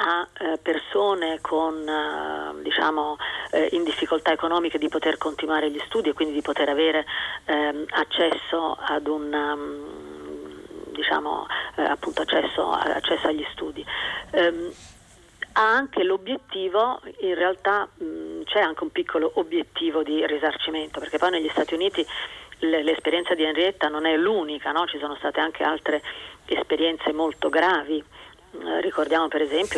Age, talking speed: 40-59, 125 wpm